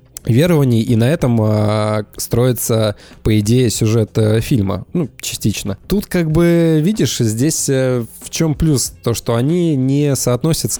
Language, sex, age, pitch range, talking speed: Russian, male, 20-39, 105-130 Hz, 135 wpm